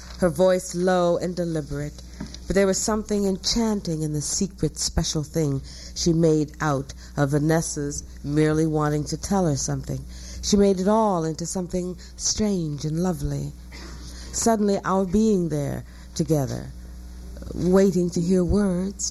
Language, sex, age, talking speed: English, female, 60-79, 140 wpm